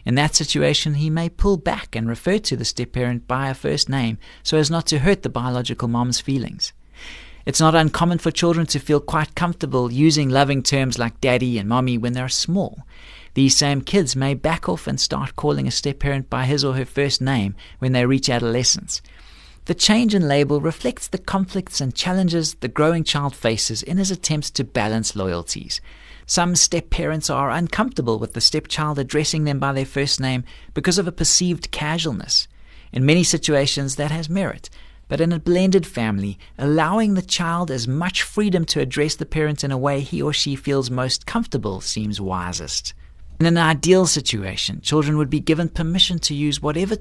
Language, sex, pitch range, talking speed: English, male, 125-165 Hz, 185 wpm